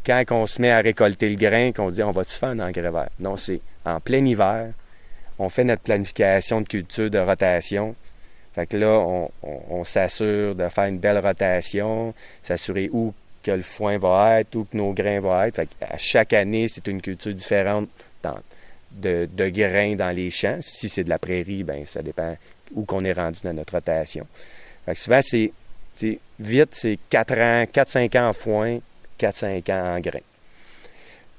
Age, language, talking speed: 30-49, English, 200 wpm